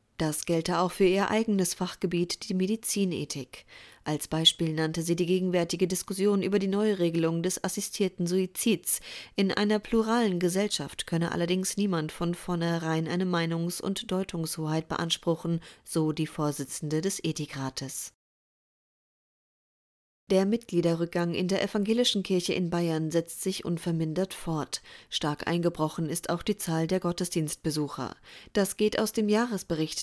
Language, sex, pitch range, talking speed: German, female, 160-195 Hz, 130 wpm